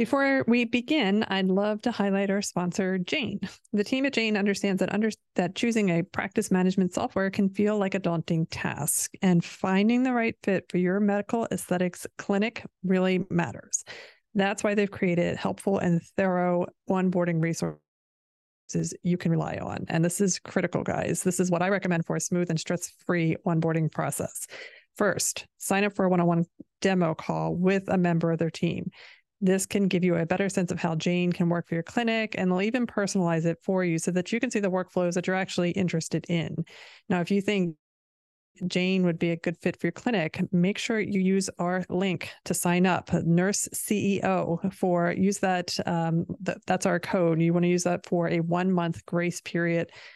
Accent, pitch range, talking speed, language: American, 170-195 Hz, 195 wpm, English